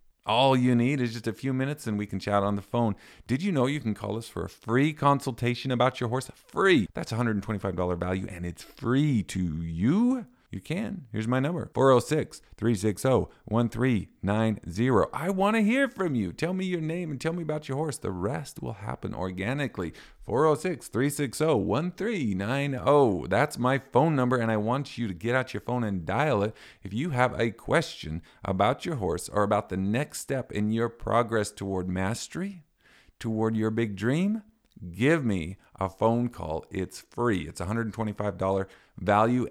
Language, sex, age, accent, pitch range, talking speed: English, male, 50-69, American, 95-130 Hz, 170 wpm